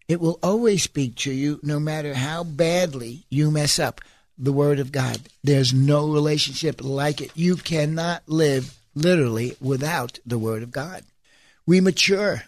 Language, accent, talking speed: English, American, 160 wpm